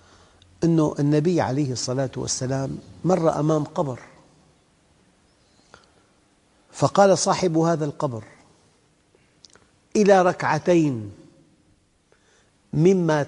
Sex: male